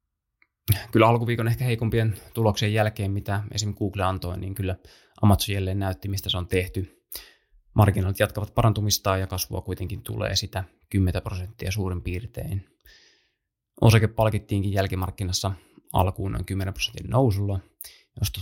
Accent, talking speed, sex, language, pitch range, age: native, 130 wpm, male, Finnish, 95-110 Hz, 20-39